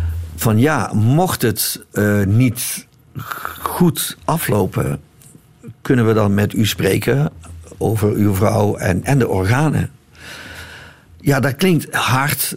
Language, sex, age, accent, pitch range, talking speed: Dutch, male, 50-69, Dutch, 100-135 Hz, 120 wpm